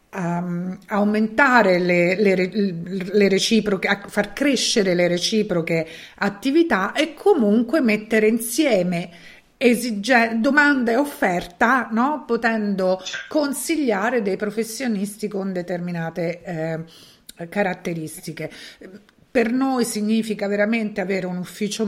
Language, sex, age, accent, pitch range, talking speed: Italian, female, 50-69, native, 175-235 Hz, 95 wpm